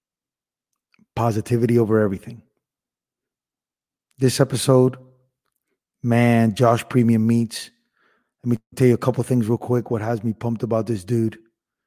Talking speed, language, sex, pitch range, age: 125 wpm, English, male, 120-140 Hz, 30-49